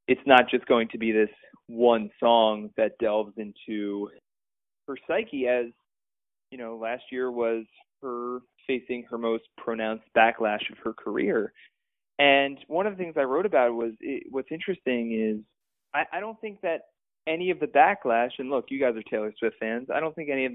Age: 20-39